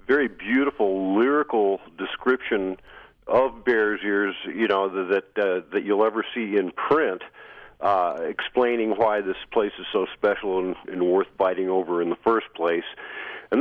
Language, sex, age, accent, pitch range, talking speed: English, male, 50-69, American, 100-140 Hz, 155 wpm